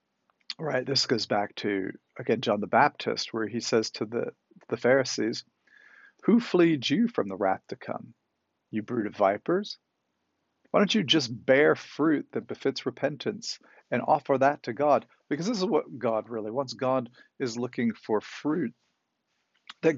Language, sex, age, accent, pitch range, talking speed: English, male, 50-69, American, 115-160 Hz, 170 wpm